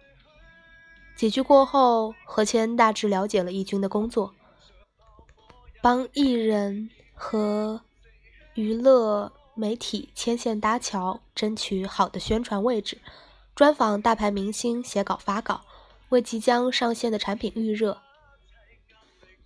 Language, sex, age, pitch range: Chinese, female, 20-39, 205-255 Hz